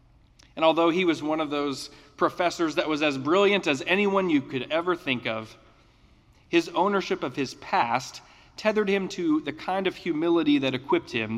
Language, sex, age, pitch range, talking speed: English, male, 40-59, 135-185 Hz, 180 wpm